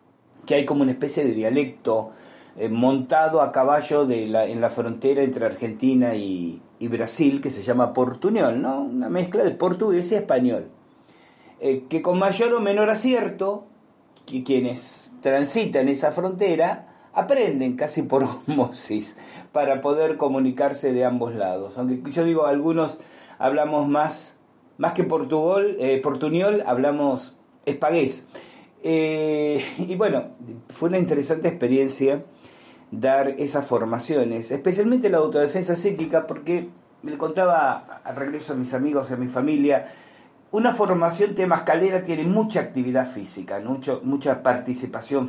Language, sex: Spanish, male